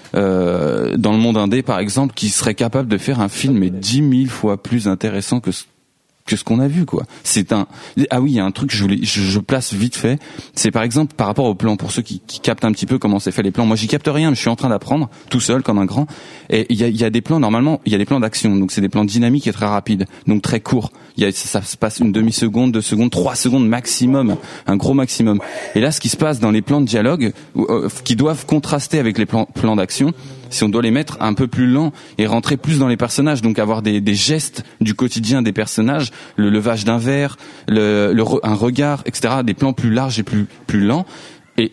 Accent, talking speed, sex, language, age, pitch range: French, 265 wpm, male, French, 20-39, 105-135 Hz